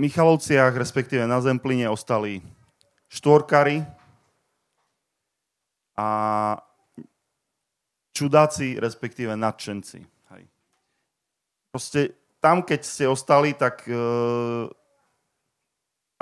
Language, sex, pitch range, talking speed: Slovak, male, 115-135 Hz, 65 wpm